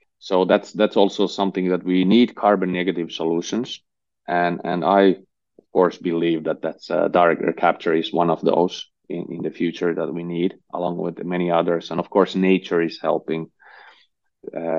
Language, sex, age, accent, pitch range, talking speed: English, male, 30-49, Finnish, 85-100 Hz, 180 wpm